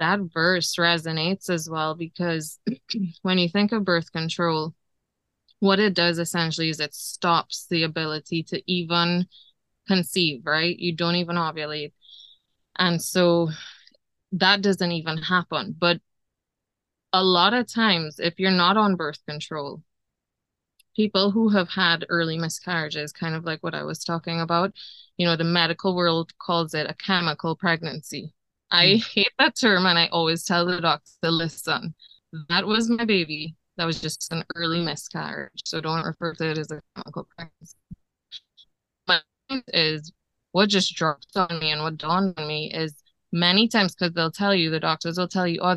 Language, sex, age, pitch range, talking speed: English, female, 20-39, 160-185 Hz, 165 wpm